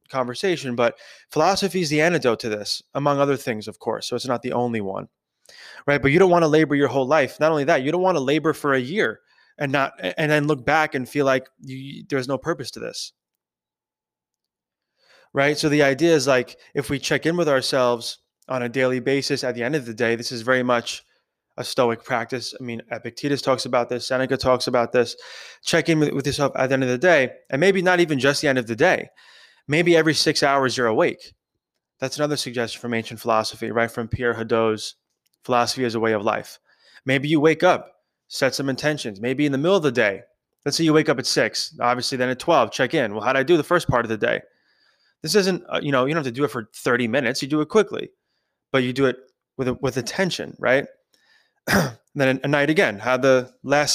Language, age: English, 20-39